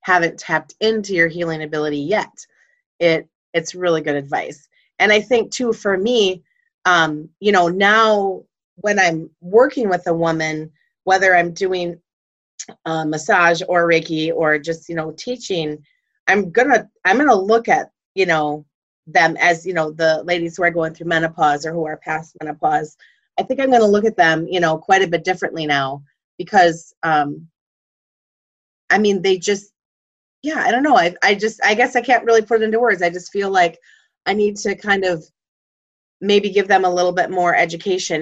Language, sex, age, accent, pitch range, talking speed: English, female, 30-49, American, 160-210 Hz, 185 wpm